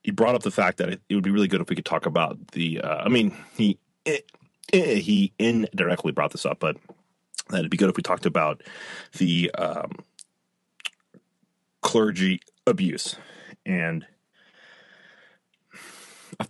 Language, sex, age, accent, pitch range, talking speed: English, male, 30-49, American, 85-105 Hz, 155 wpm